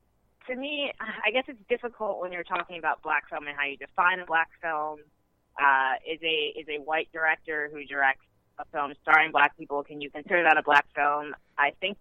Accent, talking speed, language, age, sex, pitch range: American, 205 wpm, English, 20-39, female, 145-180 Hz